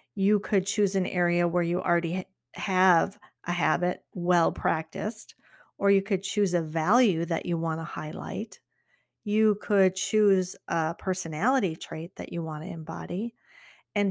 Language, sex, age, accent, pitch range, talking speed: English, female, 40-59, American, 170-205 Hz, 150 wpm